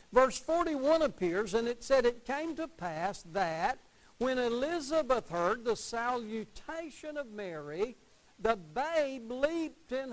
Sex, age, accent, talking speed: male, 60-79, American, 130 wpm